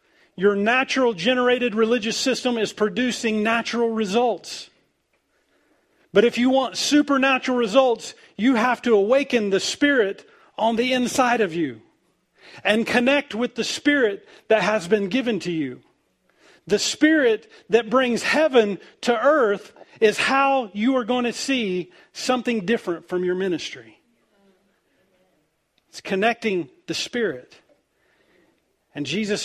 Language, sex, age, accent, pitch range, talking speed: English, male, 40-59, American, 175-245 Hz, 125 wpm